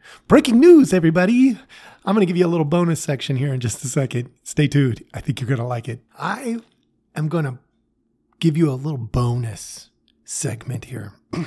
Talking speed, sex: 195 wpm, male